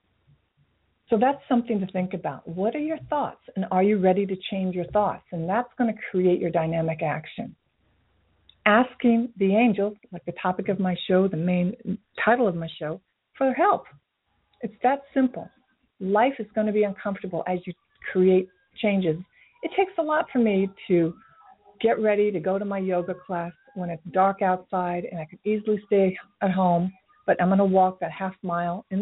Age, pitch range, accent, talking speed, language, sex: 50-69, 170-210 Hz, American, 190 wpm, English, female